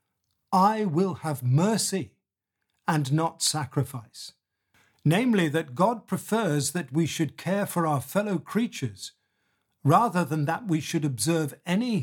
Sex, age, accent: male, 50-69, British